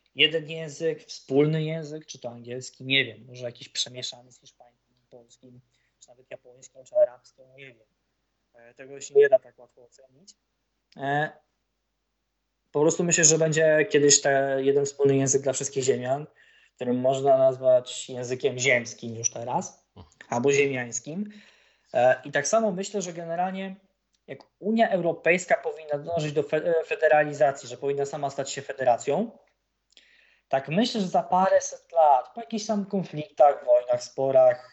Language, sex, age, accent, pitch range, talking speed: Polish, male, 20-39, native, 130-180 Hz, 145 wpm